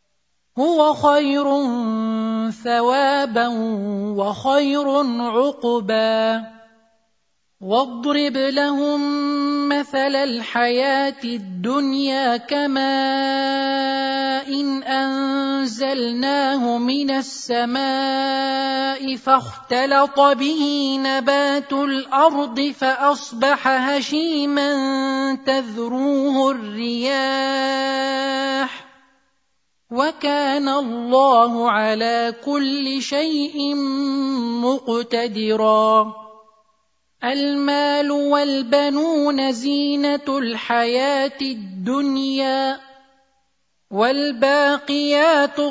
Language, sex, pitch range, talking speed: Arabic, male, 245-280 Hz, 45 wpm